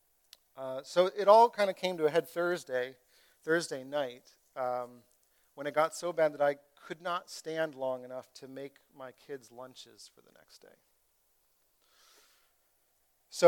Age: 40-59